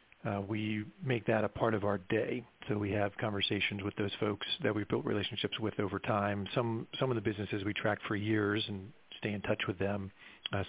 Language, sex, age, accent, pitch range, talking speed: English, male, 50-69, American, 100-115 Hz, 220 wpm